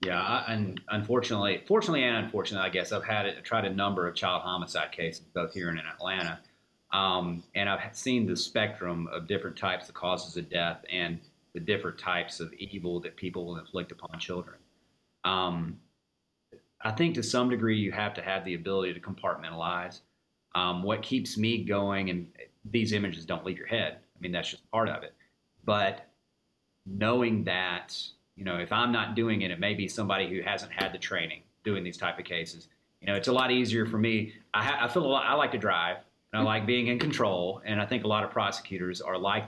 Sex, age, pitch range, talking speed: male, 30-49, 90-115 Hz, 210 wpm